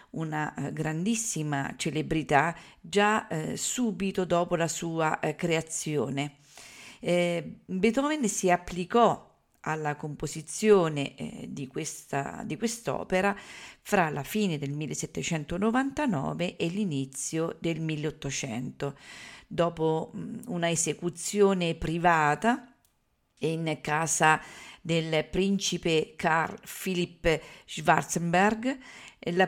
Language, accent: Italian, native